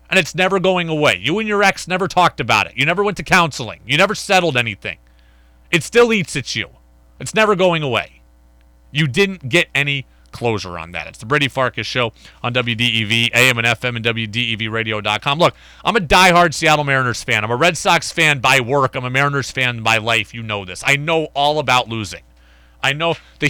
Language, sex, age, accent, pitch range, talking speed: English, male, 30-49, American, 110-175 Hz, 205 wpm